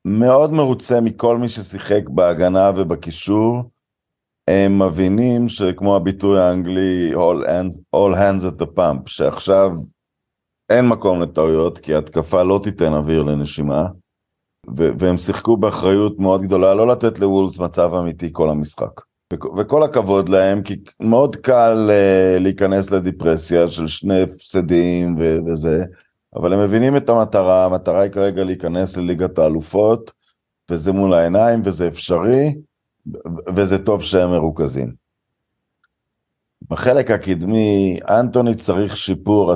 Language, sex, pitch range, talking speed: Hebrew, male, 85-105 Hz, 125 wpm